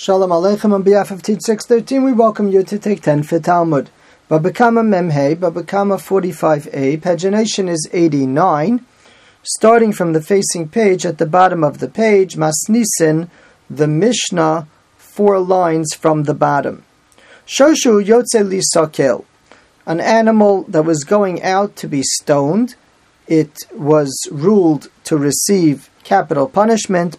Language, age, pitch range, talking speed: English, 40-59, 160-210 Hz, 130 wpm